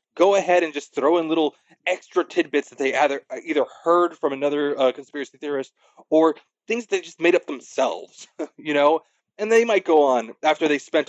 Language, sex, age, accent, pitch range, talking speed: English, male, 30-49, American, 130-170 Hz, 195 wpm